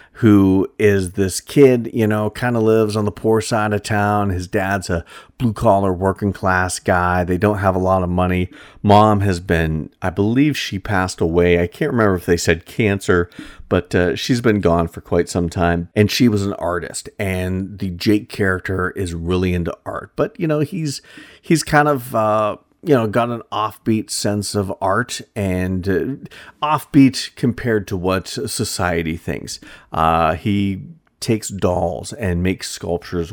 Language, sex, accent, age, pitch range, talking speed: English, male, American, 40-59, 90-110 Hz, 175 wpm